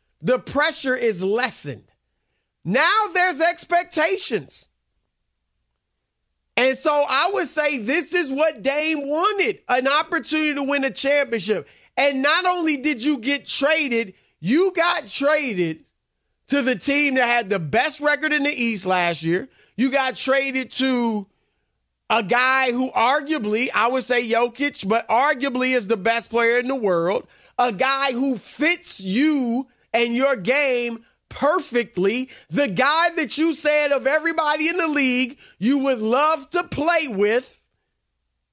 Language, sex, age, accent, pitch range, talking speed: English, male, 40-59, American, 240-320 Hz, 145 wpm